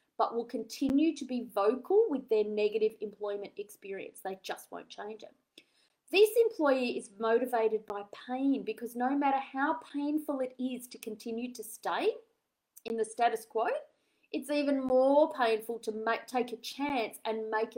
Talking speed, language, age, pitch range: 160 wpm, English, 30-49, 220-290 Hz